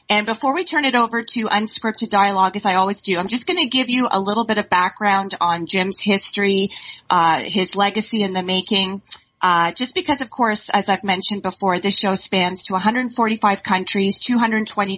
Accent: American